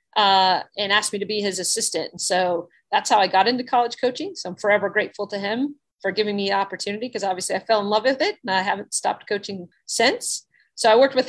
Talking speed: 240 wpm